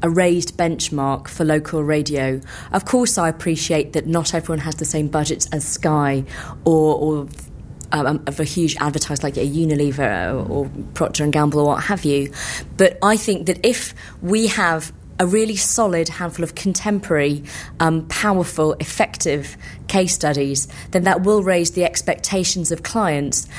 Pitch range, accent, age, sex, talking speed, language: 150-180 Hz, British, 30-49, female, 160 wpm, English